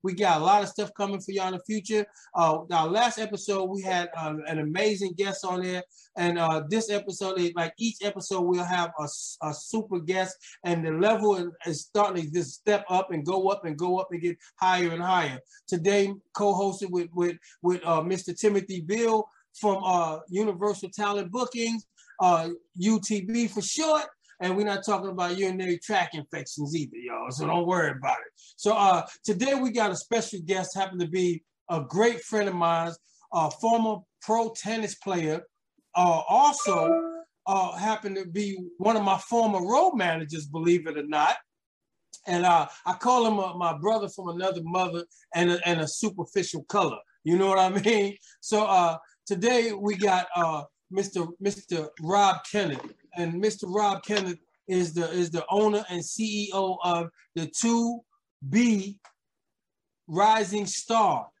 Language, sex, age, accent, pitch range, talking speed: English, male, 30-49, American, 175-210 Hz, 170 wpm